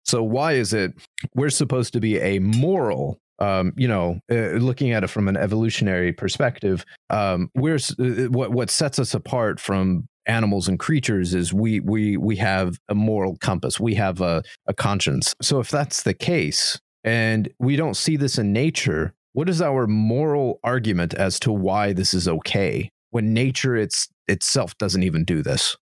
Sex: male